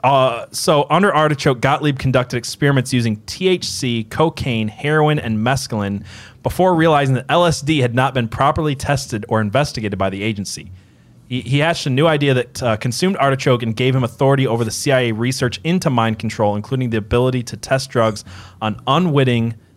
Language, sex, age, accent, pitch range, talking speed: English, male, 20-39, American, 110-145 Hz, 170 wpm